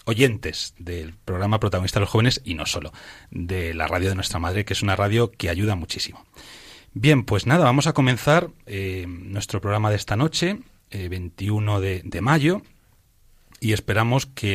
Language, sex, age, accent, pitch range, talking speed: Spanish, male, 30-49, Spanish, 95-130 Hz, 175 wpm